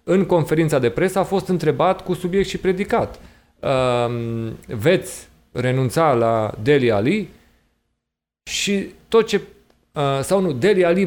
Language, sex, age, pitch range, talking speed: Romanian, male, 30-49, 110-155 Hz, 125 wpm